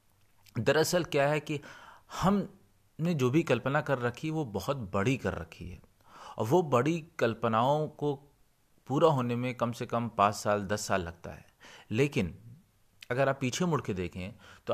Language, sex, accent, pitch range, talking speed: Hindi, male, native, 100-135 Hz, 170 wpm